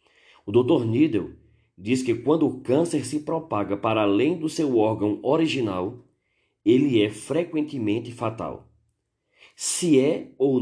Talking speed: 130 wpm